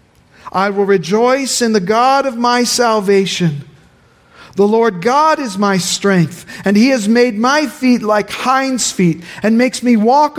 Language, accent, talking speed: English, American, 160 wpm